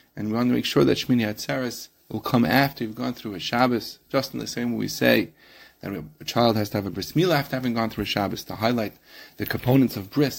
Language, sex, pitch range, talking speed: English, male, 105-130 Hz, 260 wpm